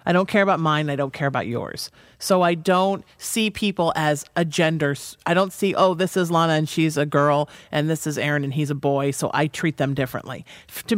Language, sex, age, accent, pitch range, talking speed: English, male, 40-59, American, 145-185 Hz, 235 wpm